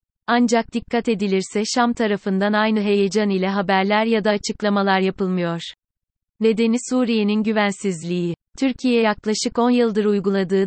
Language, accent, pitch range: Turkish, native, 195-225 Hz